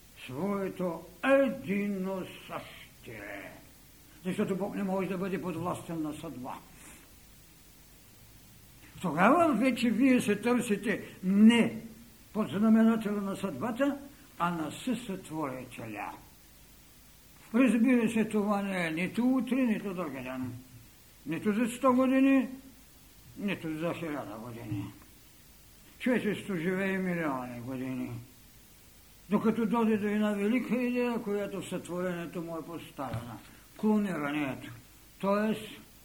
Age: 60-79